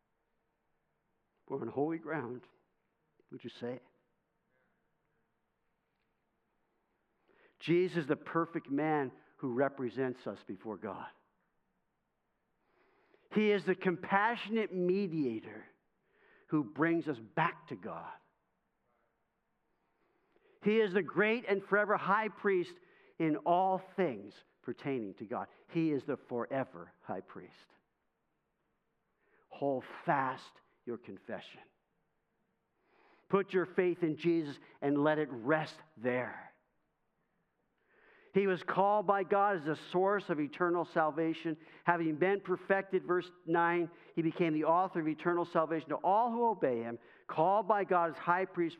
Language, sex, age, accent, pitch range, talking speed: English, male, 50-69, American, 145-195 Hz, 120 wpm